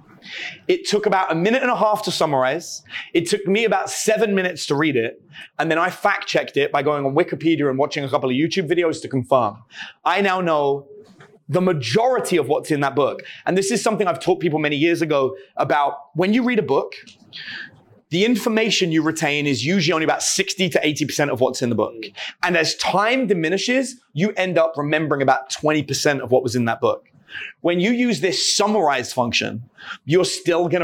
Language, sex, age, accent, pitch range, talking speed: English, male, 30-49, British, 145-195 Hz, 200 wpm